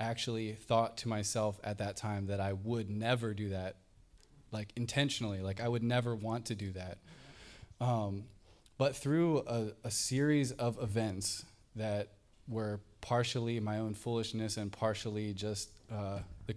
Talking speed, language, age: 150 wpm, English, 20-39